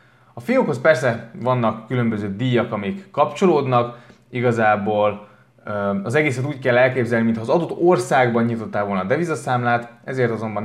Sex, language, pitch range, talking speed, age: male, Hungarian, 105-125 Hz, 135 wpm, 20-39